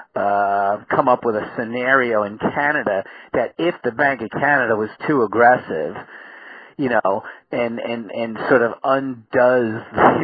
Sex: male